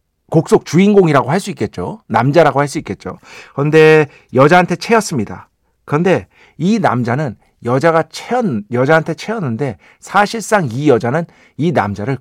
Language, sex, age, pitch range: Korean, male, 50-69, 115-170 Hz